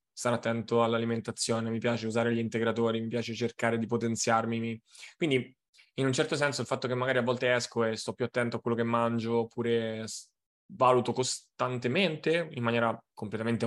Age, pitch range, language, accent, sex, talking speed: 20-39, 115-130 Hz, Italian, native, male, 170 wpm